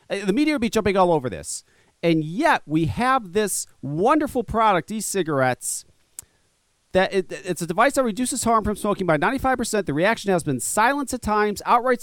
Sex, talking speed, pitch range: male, 175 wpm, 155-210 Hz